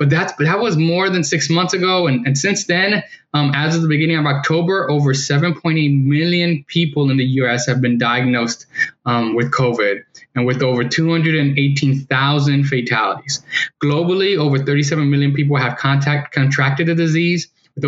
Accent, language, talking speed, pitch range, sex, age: American, English, 160 wpm, 130-160 Hz, male, 10-29